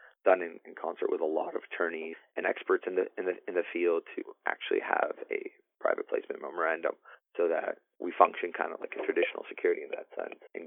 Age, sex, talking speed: 30-49, male, 220 wpm